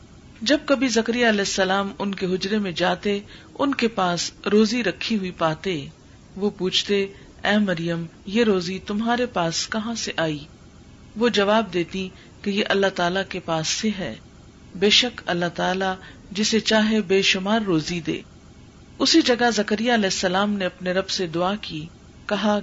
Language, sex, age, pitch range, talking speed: Urdu, female, 50-69, 175-215 Hz, 160 wpm